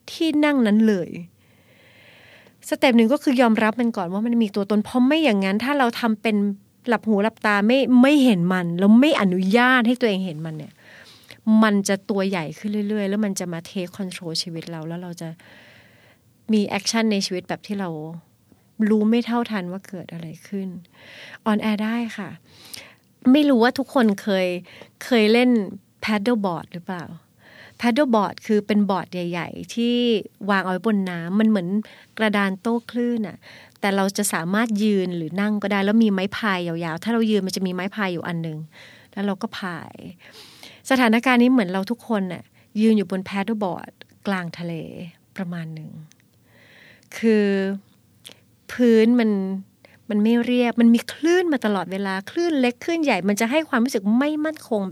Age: 30-49